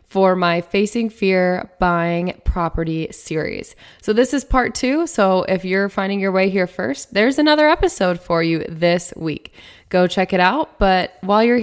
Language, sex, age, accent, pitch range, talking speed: English, female, 20-39, American, 175-215 Hz, 175 wpm